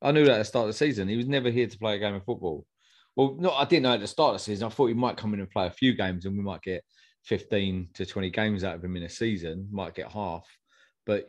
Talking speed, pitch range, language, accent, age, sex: 315 wpm, 95-110 Hz, English, British, 30-49, male